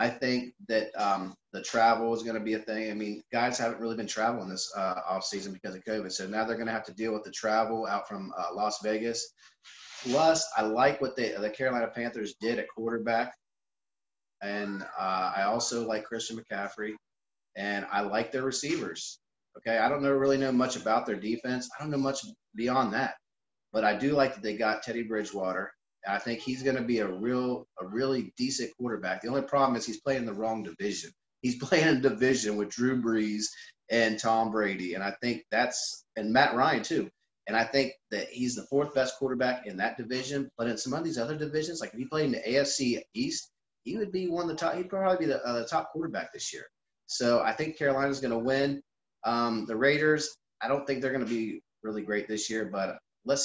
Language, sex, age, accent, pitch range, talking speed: English, male, 30-49, American, 110-135 Hz, 220 wpm